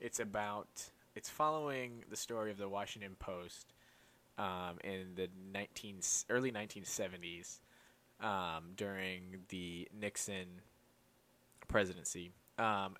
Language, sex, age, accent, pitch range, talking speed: English, male, 20-39, American, 95-110 Hz, 105 wpm